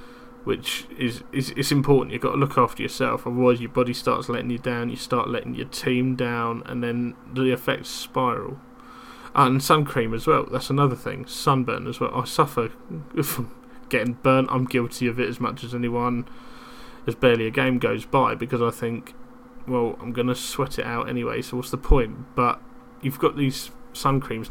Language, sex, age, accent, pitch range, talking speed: English, male, 20-39, British, 120-130 Hz, 195 wpm